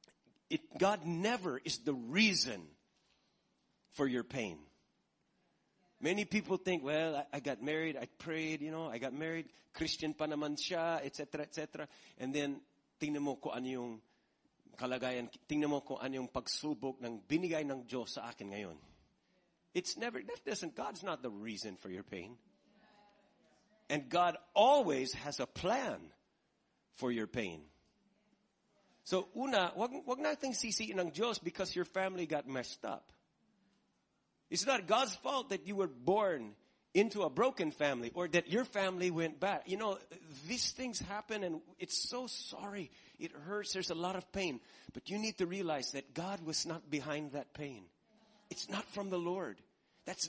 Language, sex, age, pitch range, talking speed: English, male, 50-69, 135-200 Hz, 155 wpm